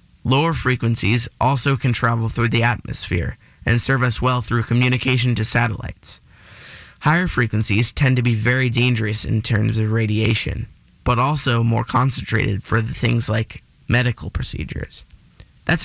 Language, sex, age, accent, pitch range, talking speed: English, male, 20-39, American, 115-130 Hz, 145 wpm